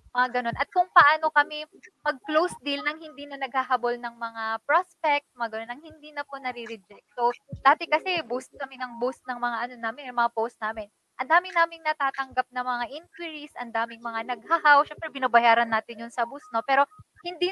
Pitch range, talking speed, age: 235-305 Hz, 190 wpm, 20-39